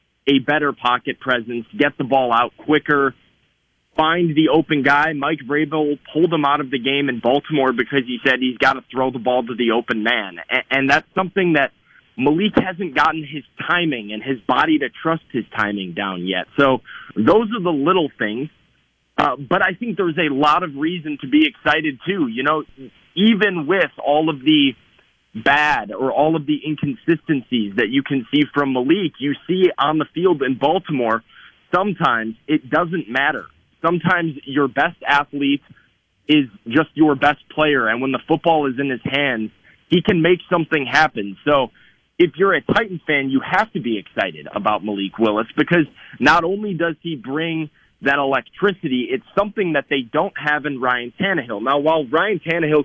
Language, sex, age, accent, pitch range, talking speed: English, male, 30-49, American, 130-160 Hz, 185 wpm